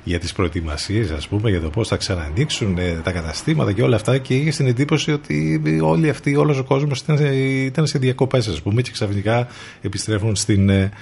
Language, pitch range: Greek, 90-120 Hz